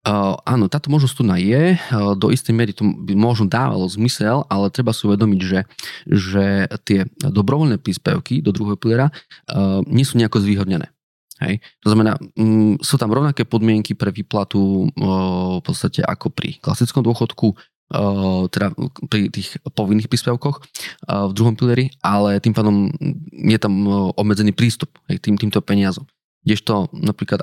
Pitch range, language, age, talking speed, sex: 100-120 Hz, Slovak, 20-39, 160 wpm, male